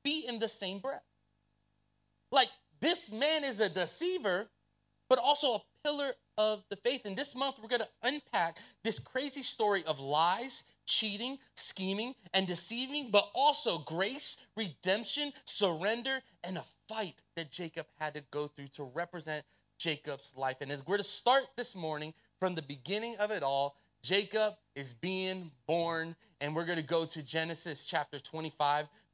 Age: 30-49